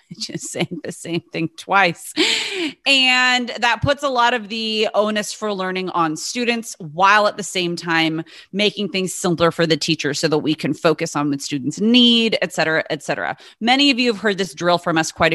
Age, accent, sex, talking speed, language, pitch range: 30-49, American, female, 205 wpm, English, 170-240 Hz